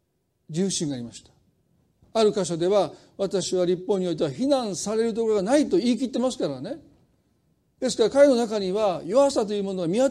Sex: male